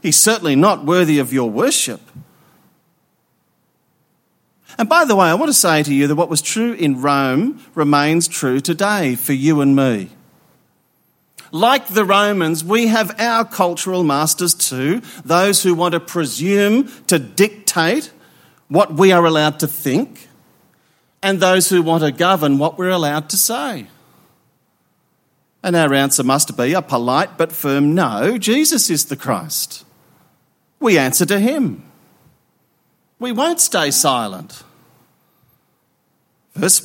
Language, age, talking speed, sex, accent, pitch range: English, 40-59, 140 wpm, male, Australian, 155-205 Hz